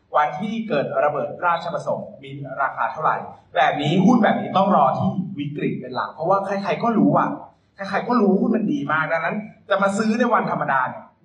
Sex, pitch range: male, 160-220 Hz